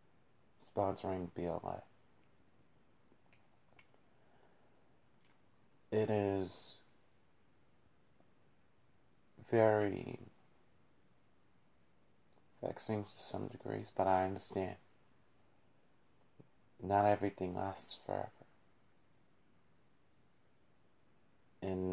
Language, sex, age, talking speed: English, male, 30-49, 45 wpm